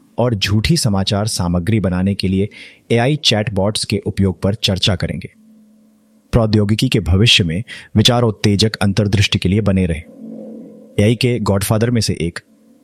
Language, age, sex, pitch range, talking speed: Hindi, 30-49, male, 100-135 Hz, 120 wpm